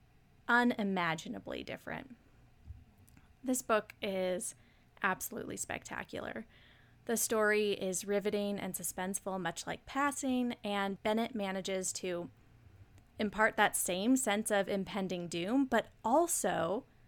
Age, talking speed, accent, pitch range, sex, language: 20-39, 100 wpm, American, 180-215 Hz, female, English